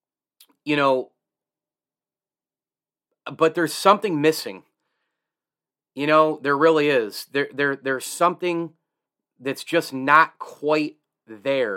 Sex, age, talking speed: male, 30-49, 100 wpm